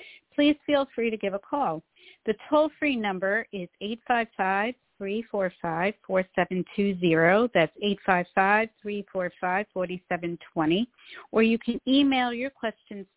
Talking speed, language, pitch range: 90 wpm, English, 185-235 Hz